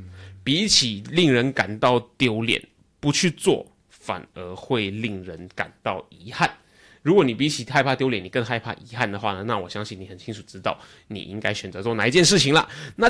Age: 20-39